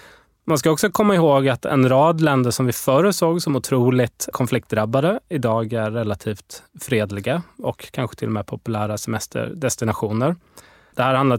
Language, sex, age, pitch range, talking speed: Swedish, male, 20-39, 110-150 Hz, 160 wpm